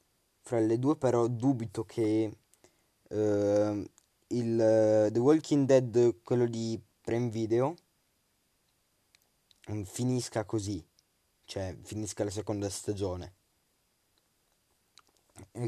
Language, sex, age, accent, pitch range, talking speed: Italian, male, 20-39, native, 105-135 Hz, 90 wpm